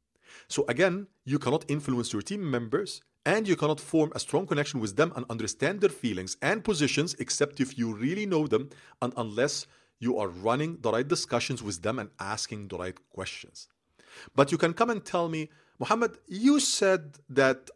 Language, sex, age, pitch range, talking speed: English, male, 40-59, 125-190 Hz, 185 wpm